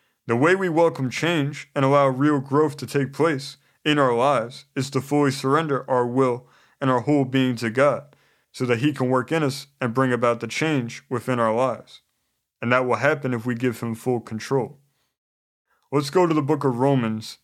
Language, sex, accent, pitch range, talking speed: English, male, American, 130-155 Hz, 205 wpm